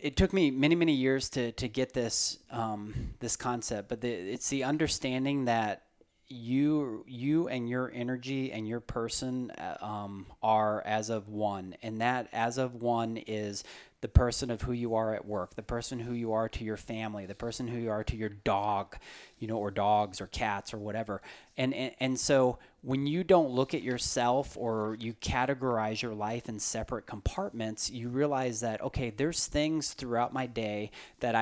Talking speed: 185 wpm